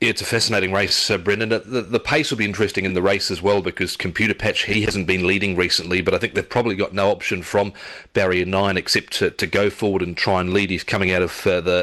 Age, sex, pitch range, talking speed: 30-49, male, 90-100 Hz, 260 wpm